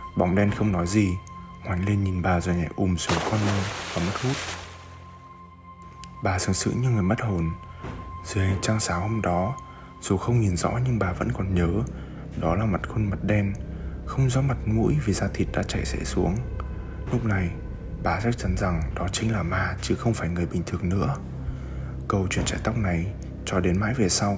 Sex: male